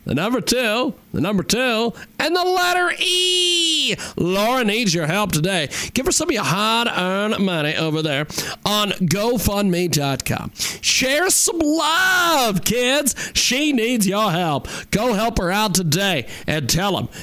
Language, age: English, 40-59